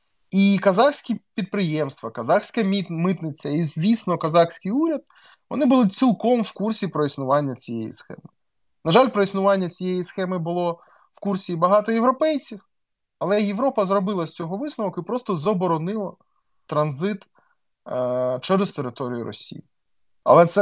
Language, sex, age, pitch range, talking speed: Ukrainian, male, 20-39, 155-210 Hz, 130 wpm